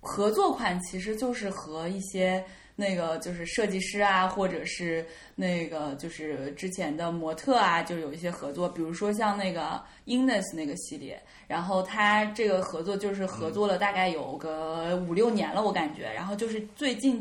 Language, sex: Chinese, female